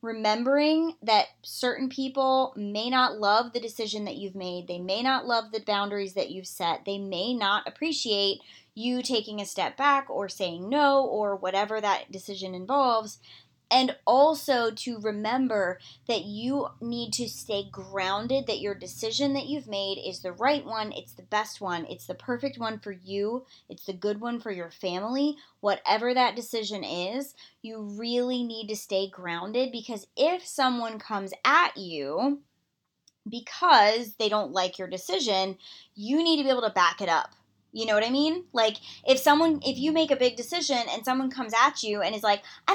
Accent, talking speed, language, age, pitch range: American, 180 wpm, English, 20-39, 205-275 Hz